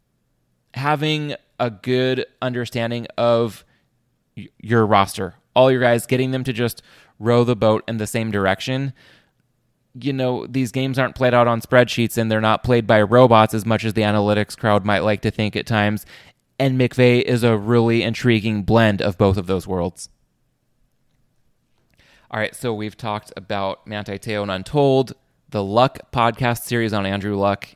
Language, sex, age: English, male, 20-39